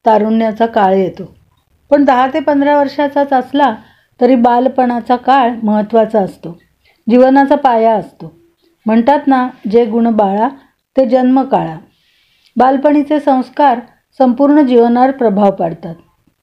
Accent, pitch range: native, 220-265 Hz